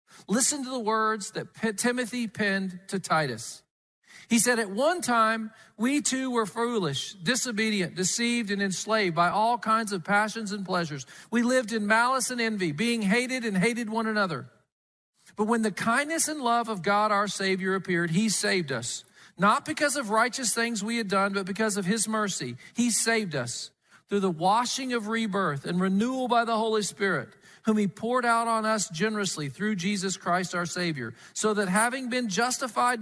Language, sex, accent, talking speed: English, male, American, 180 wpm